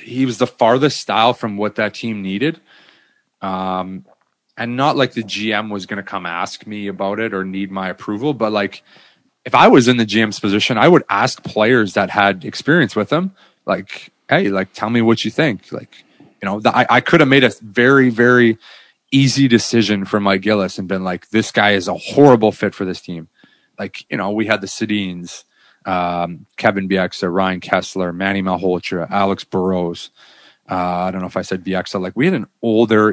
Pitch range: 95-115 Hz